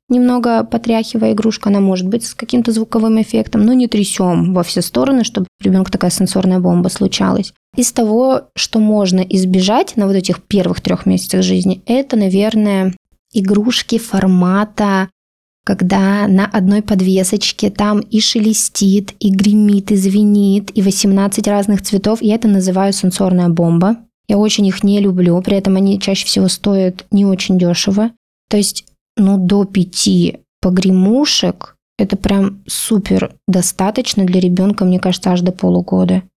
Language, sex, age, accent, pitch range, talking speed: Russian, female, 20-39, native, 185-210 Hz, 150 wpm